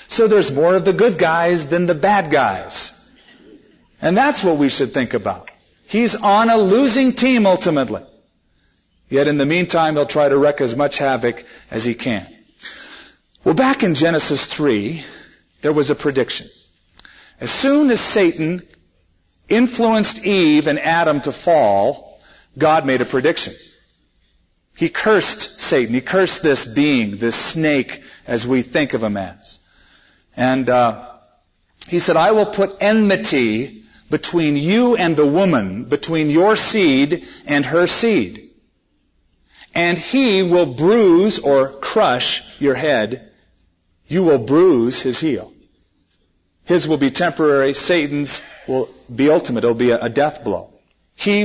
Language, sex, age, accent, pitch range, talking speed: English, male, 40-59, American, 130-200 Hz, 145 wpm